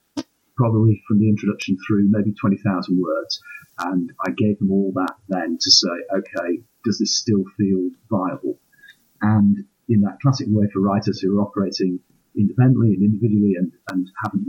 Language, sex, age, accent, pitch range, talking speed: English, male, 40-59, British, 100-130 Hz, 160 wpm